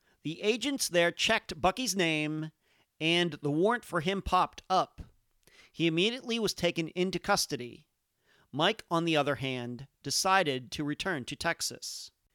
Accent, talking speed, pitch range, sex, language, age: American, 140 wpm, 150-205 Hz, male, English, 40-59